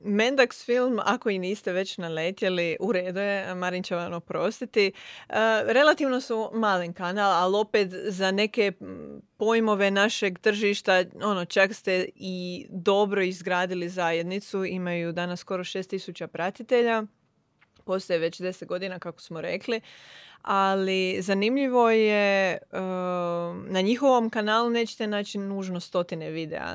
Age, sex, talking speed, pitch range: 30-49, female, 125 wpm, 180-205 Hz